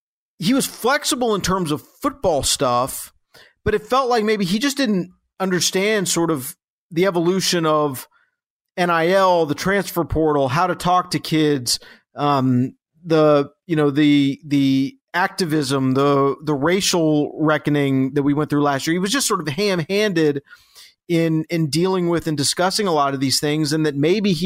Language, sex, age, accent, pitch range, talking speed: English, male, 40-59, American, 150-195 Hz, 170 wpm